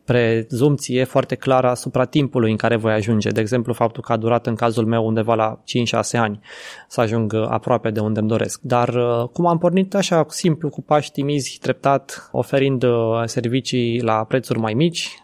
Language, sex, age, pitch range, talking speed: Romanian, male, 20-39, 120-150 Hz, 175 wpm